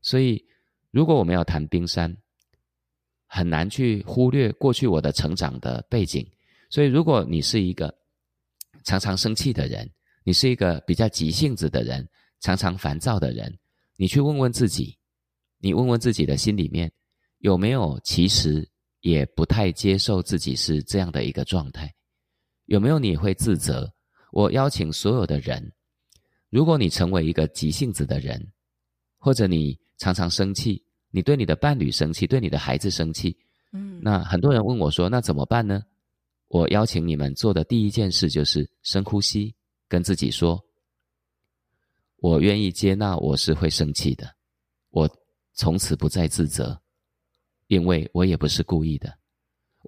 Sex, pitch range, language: male, 75-105 Hz, Chinese